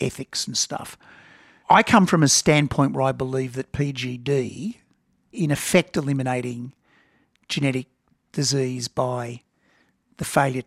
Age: 50-69